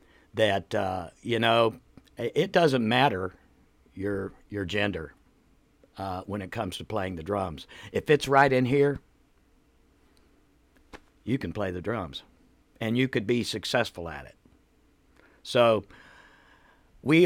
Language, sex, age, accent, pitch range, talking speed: English, male, 60-79, American, 100-130 Hz, 130 wpm